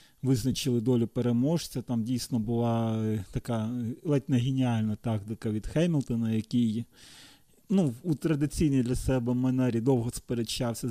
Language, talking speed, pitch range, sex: Ukrainian, 120 wpm, 120-145 Hz, male